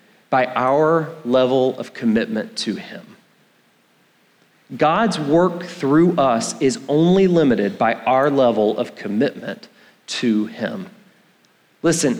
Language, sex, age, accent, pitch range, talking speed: English, male, 40-59, American, 155-200 Hz, 110 wpm